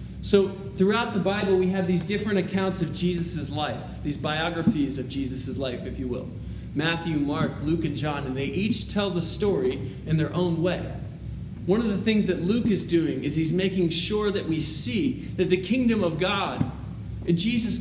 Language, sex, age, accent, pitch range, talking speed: English, male, 30-49, American, 160-200 Hz, 190 wpm